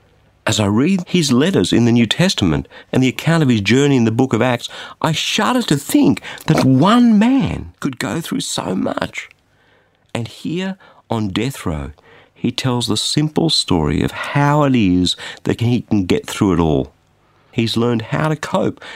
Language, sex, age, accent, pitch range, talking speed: English, male, 50-69, Australian, 120-175 Hz, 185 wpm